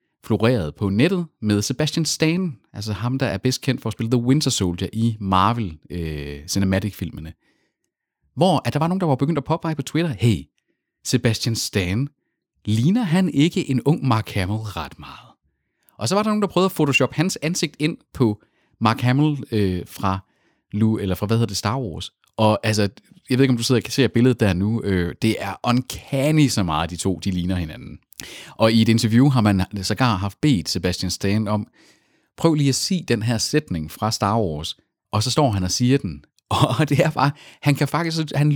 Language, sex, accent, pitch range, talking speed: Danish, male, native, 100-140 Hz, 200 wpm